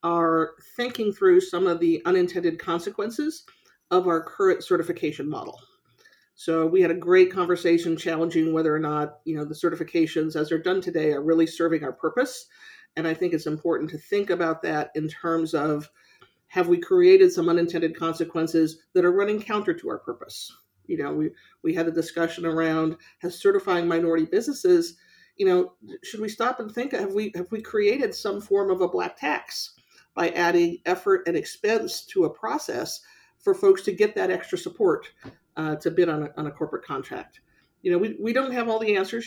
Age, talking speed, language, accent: 50-69, 190 wpm, English, American